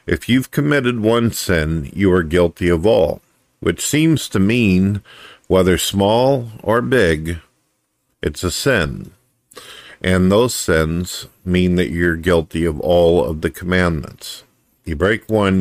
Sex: male